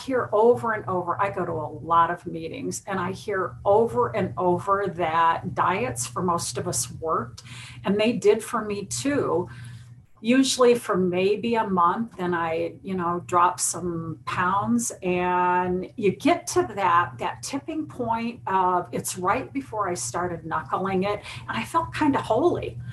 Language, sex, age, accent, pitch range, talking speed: English, female, 50-69, American, 170-230 Hz, 165 wpm